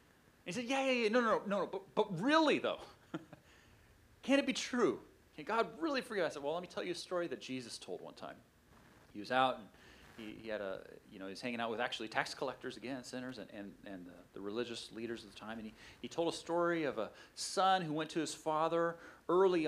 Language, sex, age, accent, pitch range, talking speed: English, male, 30-49, American, 120-165 Hz, 250 wpm